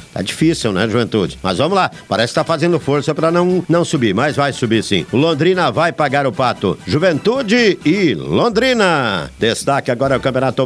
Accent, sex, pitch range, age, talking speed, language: Brazilian, male, 130-190 Hz, 50-69, 190 wpm, Portuguese